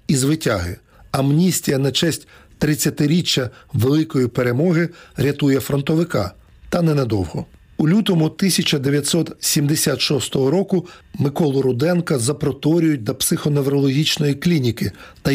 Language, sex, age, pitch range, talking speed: Ukrainian, male, 40-59, 130-165 Hz, 90 wpm